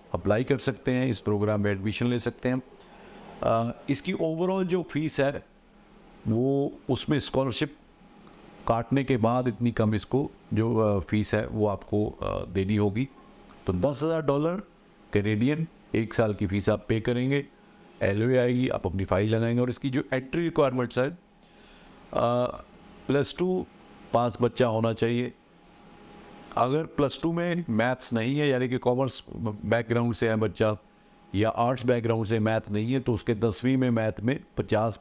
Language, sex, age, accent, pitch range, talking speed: Hindi, male, 50-69, native, 110-135 Hz, 155 wpm